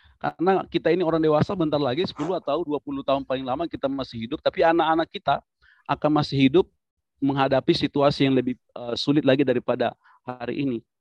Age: 40-59